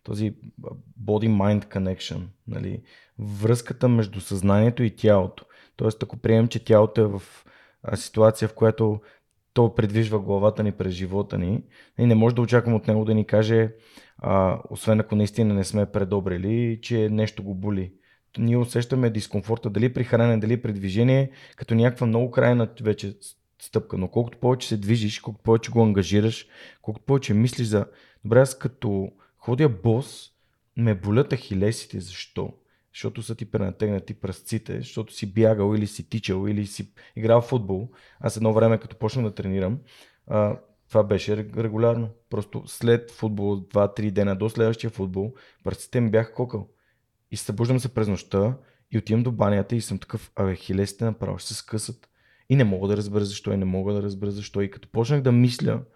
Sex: male